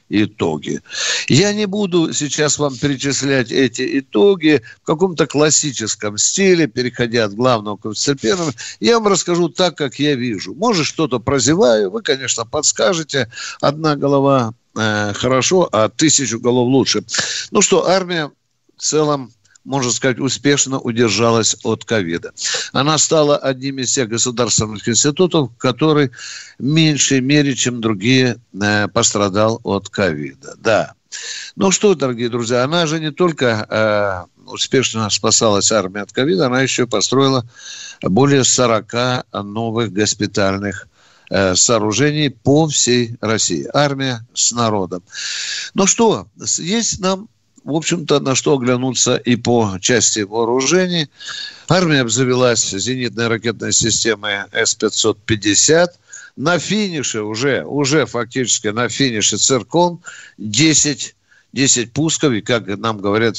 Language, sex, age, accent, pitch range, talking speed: Russian, male, 60-79, native, 110-150 Hz, 120 wpm